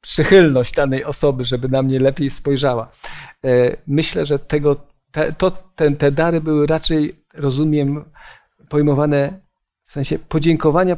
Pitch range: 145-170 Hz